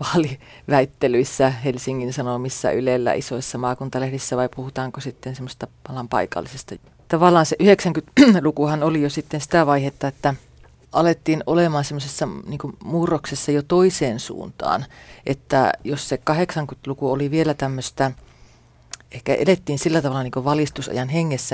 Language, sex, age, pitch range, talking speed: Finnish, female, 30-49, 130-155 Hz, 120 wpm